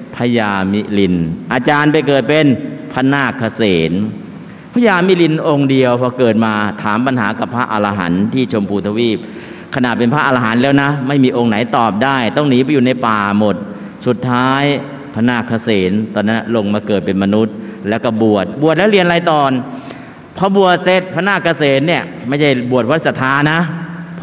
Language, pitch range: Thai, 110-145 Hz